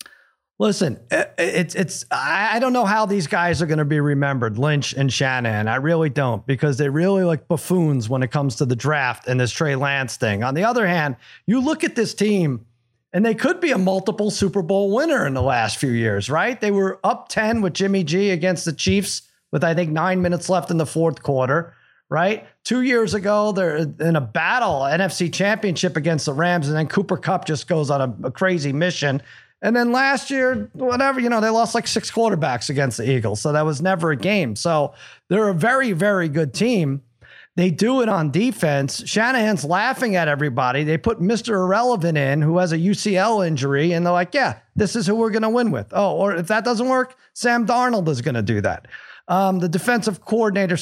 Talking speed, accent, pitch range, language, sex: 215 wpm, American, 145-205 Hz, English, male